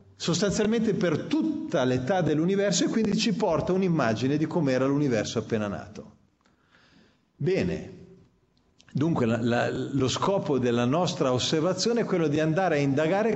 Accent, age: native, 40-59